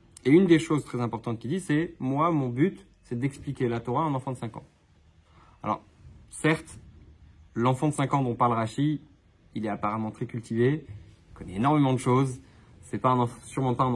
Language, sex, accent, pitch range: French, male, French, 110-145 Hz